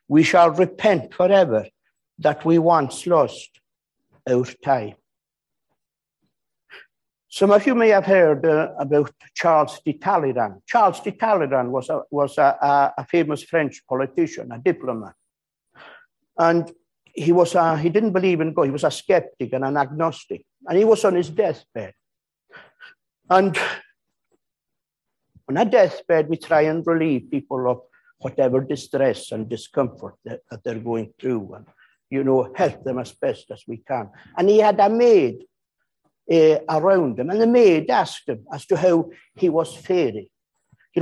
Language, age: English, 60-79